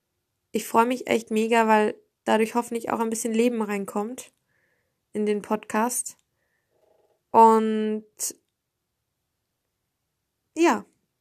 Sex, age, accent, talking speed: female, 20-39, German, 95 wpm